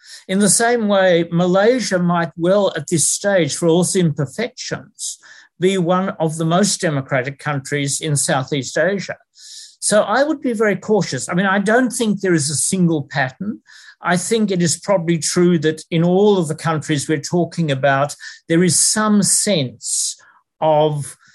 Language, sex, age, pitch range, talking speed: English, male, 50-69, 150-180 Hz, 170 wpm